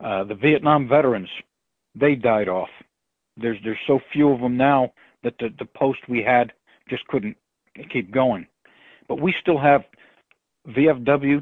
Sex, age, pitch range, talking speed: male, 60-79, 120-150 Hz, 150 wpm